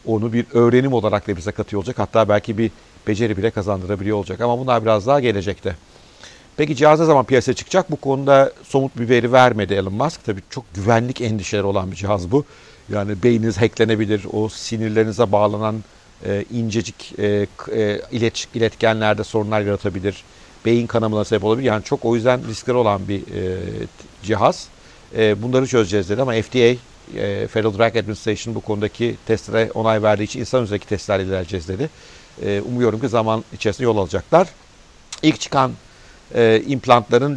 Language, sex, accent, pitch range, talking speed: Turkish, male, native, 105-120 Hz, 155 wpm